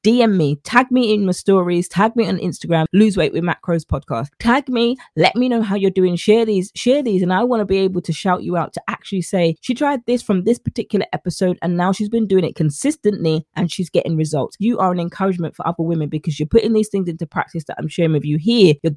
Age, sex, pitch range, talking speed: 20-39, female, 160-205 Hz, 255 wpm